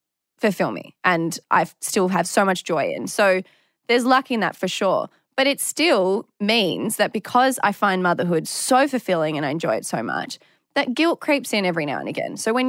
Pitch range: 180-225 Hz